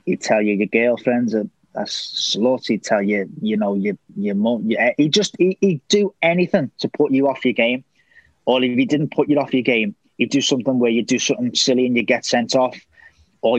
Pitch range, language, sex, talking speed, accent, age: 115-145 Hz, English, male, 215 wpm, British, 20-39